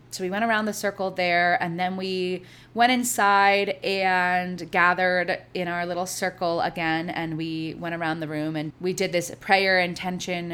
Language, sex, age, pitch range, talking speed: English, female, 20-39, 170-200 Hz, 175 wpm